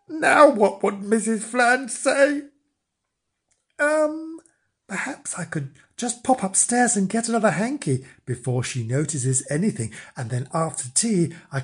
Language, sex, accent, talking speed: English, male, British, 135 wpm